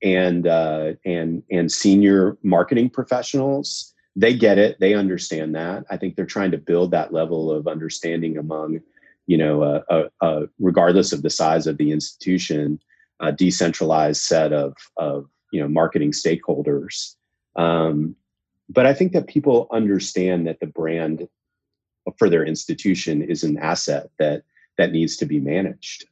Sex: male